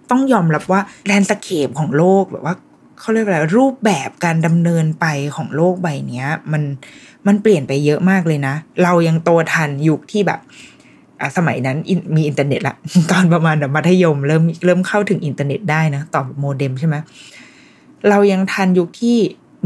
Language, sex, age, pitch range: Thai, female, 20-39, 150-195 Hz